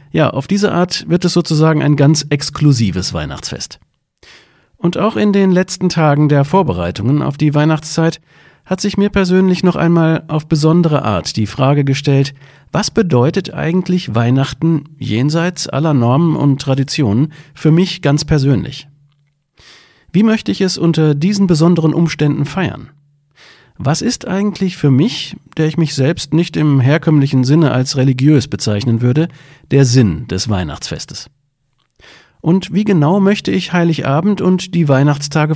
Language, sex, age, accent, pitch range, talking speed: German, male, 40-59, German, 135-170 Hz, 145 wpm